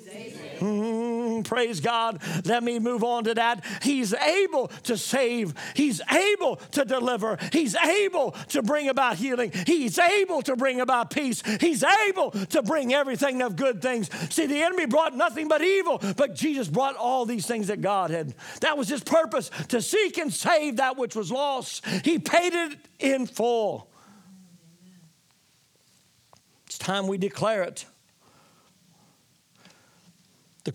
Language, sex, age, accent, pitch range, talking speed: English, male, 50-69, American, 185-260 Hz, 145 wpm